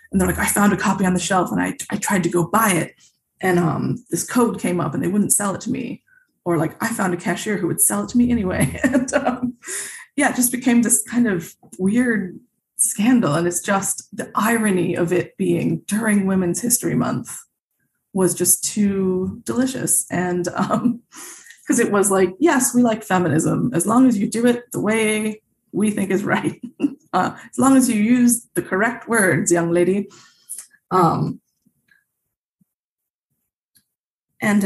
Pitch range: 185-245 Hz